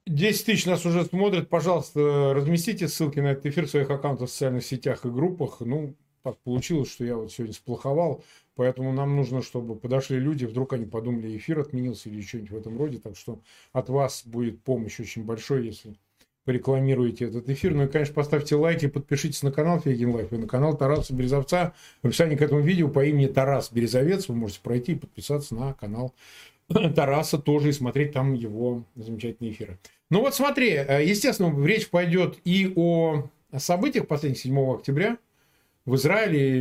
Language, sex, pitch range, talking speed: Russian, male, 120-155 Hz, 175 wpm